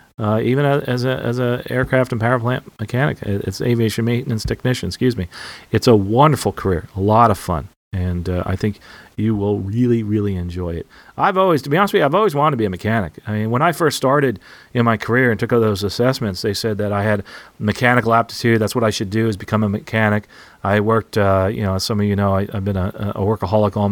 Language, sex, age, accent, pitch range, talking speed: English, male, 40-59, American, 100-120 Hz, 240 wpm